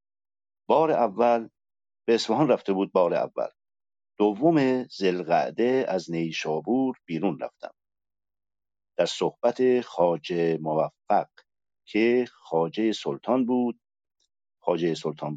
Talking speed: 95 wpm